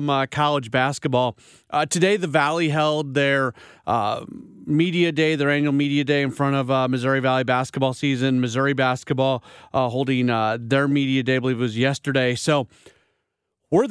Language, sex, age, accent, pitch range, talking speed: English, male, 40-59, American, 135-165 Hz, 170 wpm